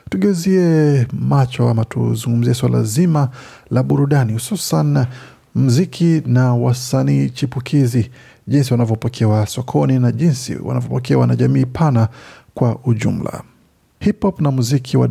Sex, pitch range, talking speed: male, 120-140 Hz, 115 wpm